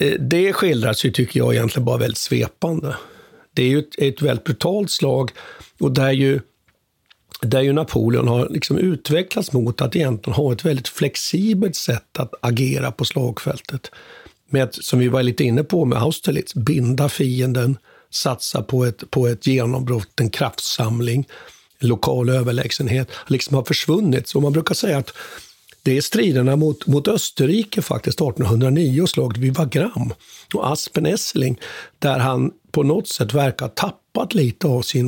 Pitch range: 125-165 Hz